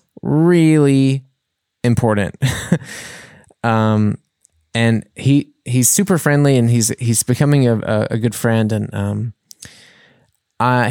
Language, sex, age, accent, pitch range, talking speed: English, male, 20-39, American, 110-140 Hz, 110 wpm